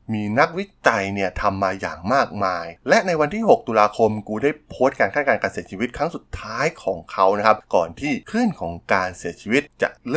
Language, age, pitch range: Thai, 20-39, 95-125 Hz